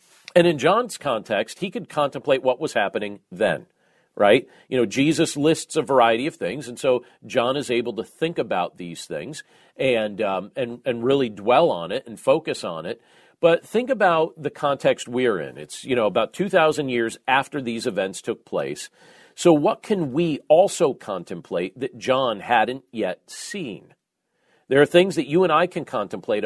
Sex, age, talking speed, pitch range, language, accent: male, 40-59, 180 wpm, 125-160 Hz, English, American